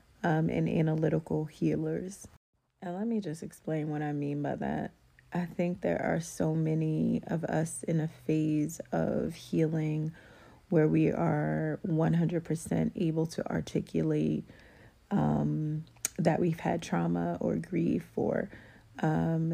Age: 30-49